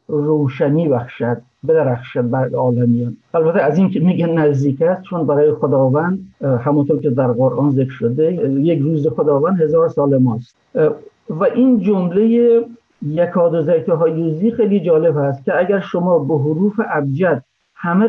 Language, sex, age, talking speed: Persian, male, 50-69, 145 wpm